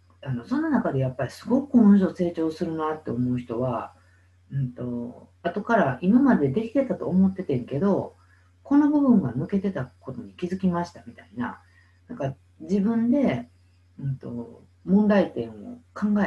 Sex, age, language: female, 50-69, Japanese